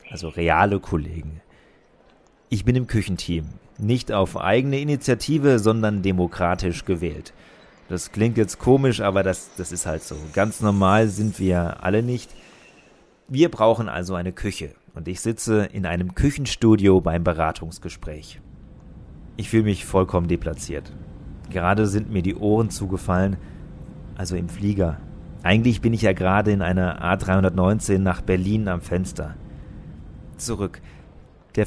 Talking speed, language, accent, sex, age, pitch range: 135 wpm, German, German, male, 30-49, 90-120 Hz